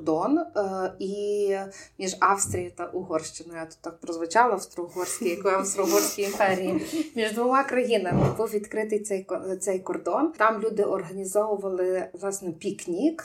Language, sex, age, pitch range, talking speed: Ukrainian, female, 30-49, 185-230 Hz, 120 wpm